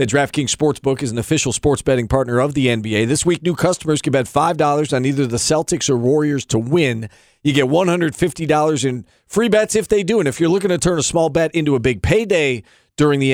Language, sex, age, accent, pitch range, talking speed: English, male, 40-59, American, 135-175 Hz, 230 wpm